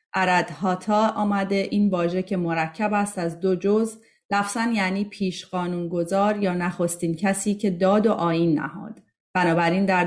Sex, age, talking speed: female, 30-49, 155 wpm